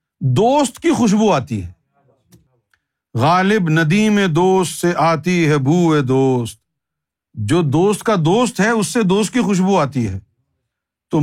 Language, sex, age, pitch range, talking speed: Urdu, male, 50-69, 130-215 Hz, 140 wpm